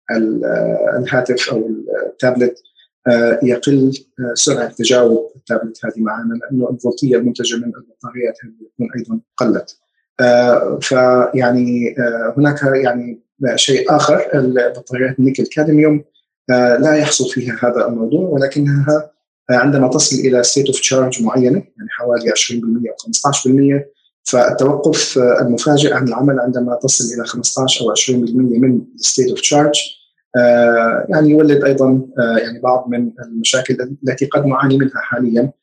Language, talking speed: Arabic, 115 wpm